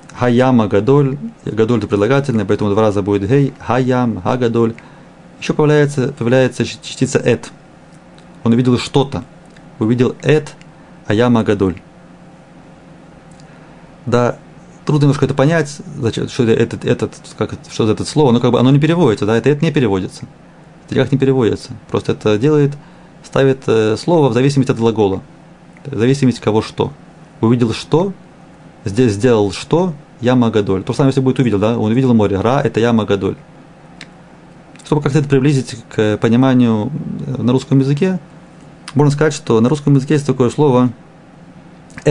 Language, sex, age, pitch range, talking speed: Russian, male, 30-49, 115-150 Hz, 150 wpm